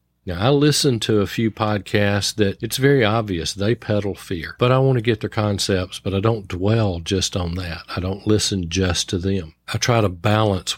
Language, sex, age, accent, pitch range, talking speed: English, male, 50-69, American, 95-110 Hz, 210 wpm